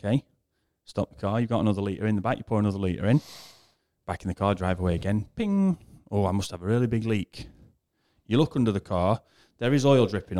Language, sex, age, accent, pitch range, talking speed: English, male, 30-49, British, 90-110 Hz, 235 wpm